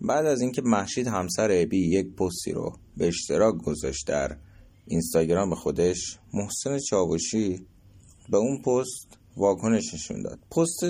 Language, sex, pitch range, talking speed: Persian, male, 90-120 Hz, 140 wpm